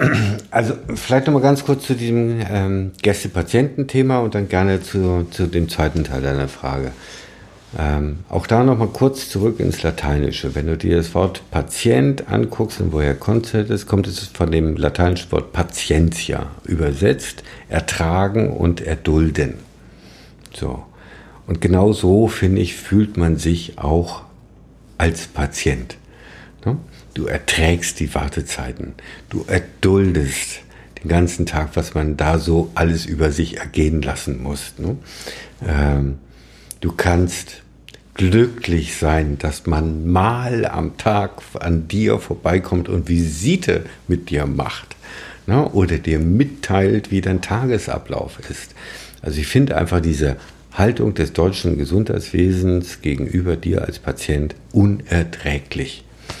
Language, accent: German, German